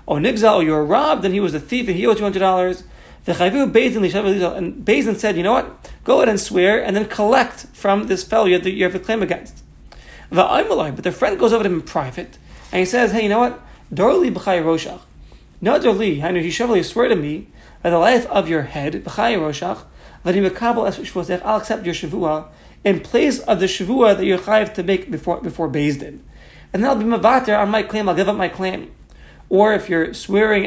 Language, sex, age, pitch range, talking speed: English, male, 40-59, 170-215 Hz, 230 wpm